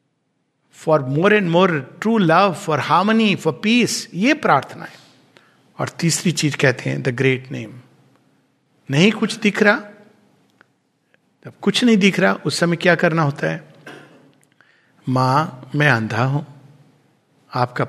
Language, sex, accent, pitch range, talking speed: Hindi, male, native, 135-175 Hz, 135 wpm